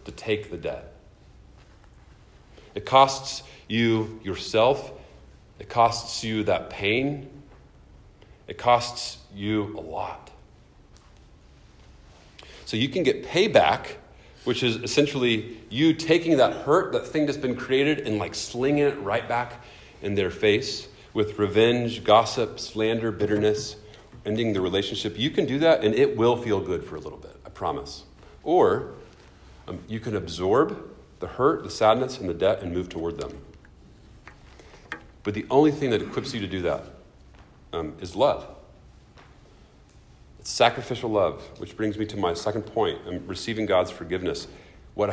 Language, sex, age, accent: English, male, 40-59, American